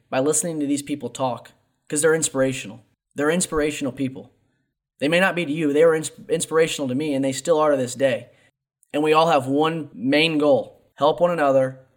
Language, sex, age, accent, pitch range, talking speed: English, male, 20-39, American, 125-150 Hz, 200 wpm